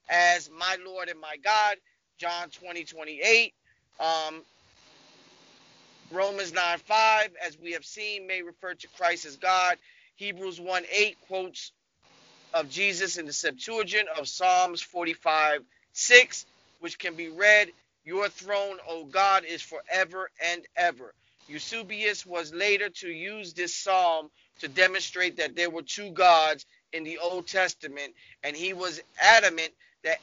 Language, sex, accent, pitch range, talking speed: English, male, American, 165-200 Hz, 145 wpm